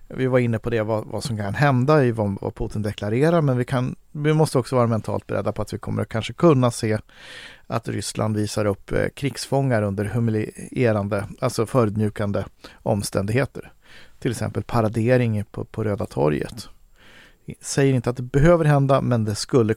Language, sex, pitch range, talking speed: Swedish, male, 110-130 Hz, 165 wpm